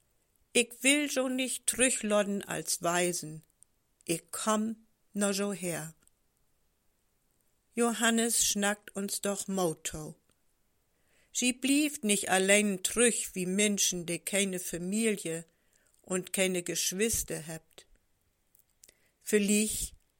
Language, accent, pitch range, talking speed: German, German, 175-225 Hz, 95 wpm